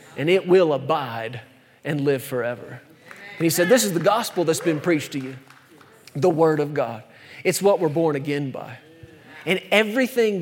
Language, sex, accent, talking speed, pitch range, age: English, male, American, 180 wpm, 150-220 Hz, 40-59